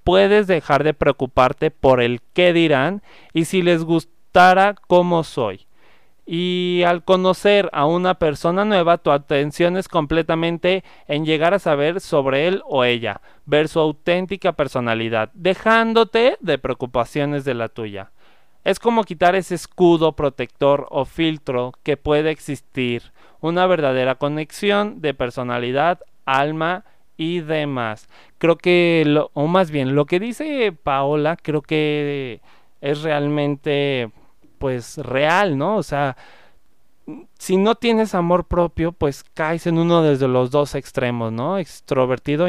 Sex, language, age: male, Spanish, 30-49